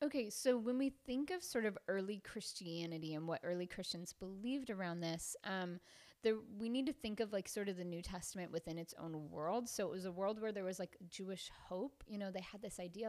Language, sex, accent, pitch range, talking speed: English, female, American, 170-215 Hz, 235 wpm